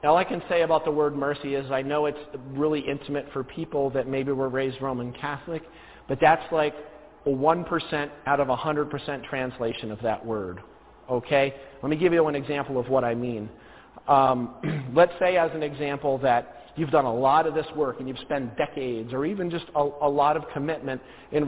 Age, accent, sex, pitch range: 40-59, American, male, 130-155 Hz